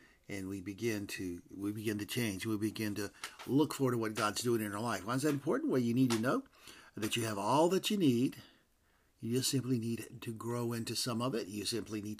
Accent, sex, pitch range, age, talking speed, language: American, male, 105-140 Hz, 50-69, 240 wpm, English